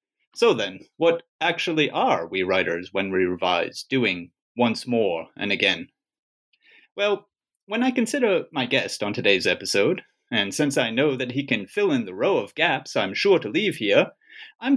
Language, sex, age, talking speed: English, male, 30-49, 175 wpm